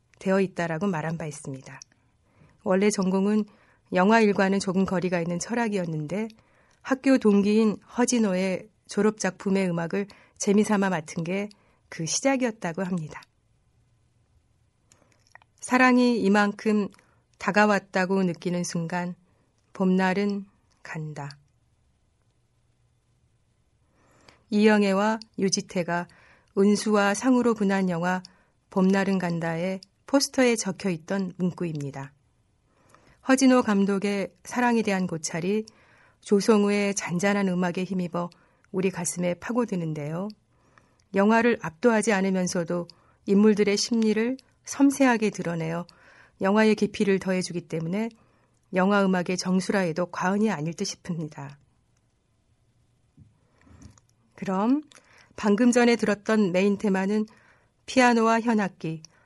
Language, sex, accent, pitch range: Korean, female, native, 170-210 Hz